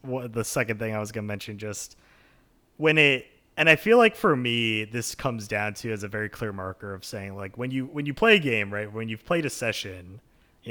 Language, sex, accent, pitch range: English, male, American, 100-125 Hz